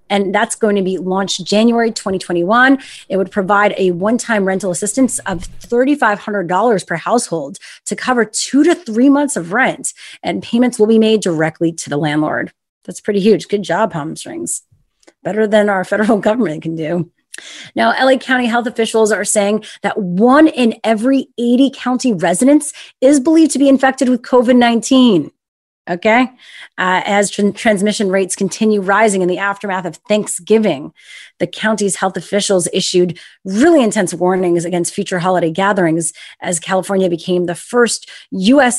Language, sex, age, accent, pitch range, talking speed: English, female, 30-49, American, 180-230 Hz, 155 wpm